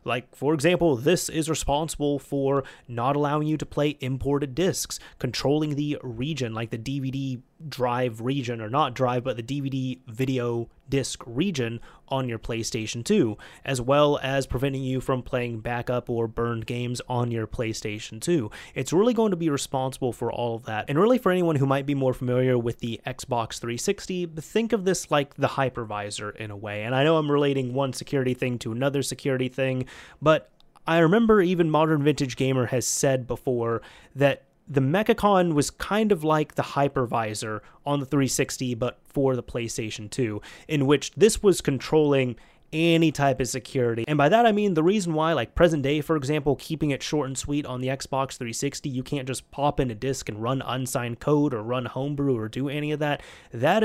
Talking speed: 190 wpm